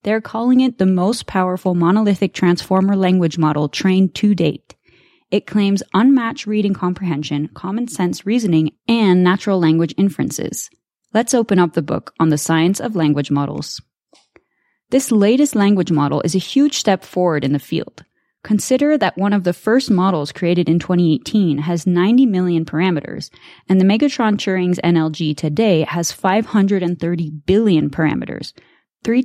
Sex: female